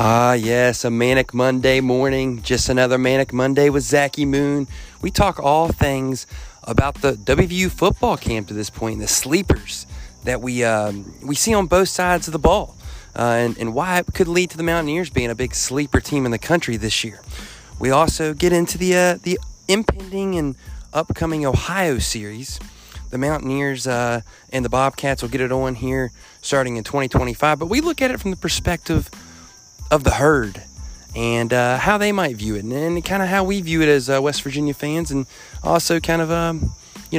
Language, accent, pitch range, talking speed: English, American, 115-155 Hz, 195 wpm